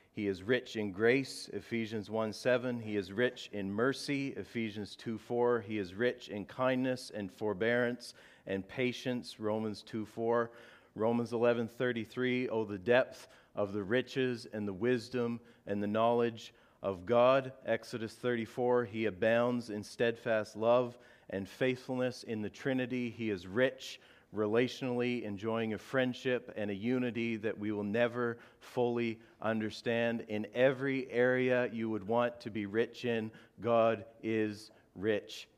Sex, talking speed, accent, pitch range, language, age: male, 145 wpm, American, 105-120 Hz, English, 40-59